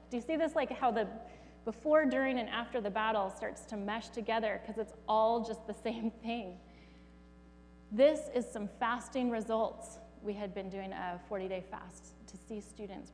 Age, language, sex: 30-49, English, female